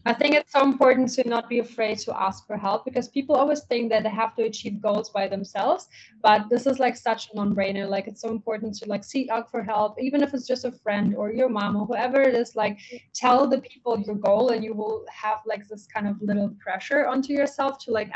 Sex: female